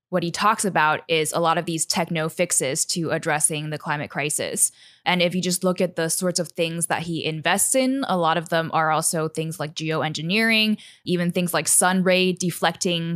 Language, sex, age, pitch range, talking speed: English, female, 10-29, 165-190 Hz, 205 wpm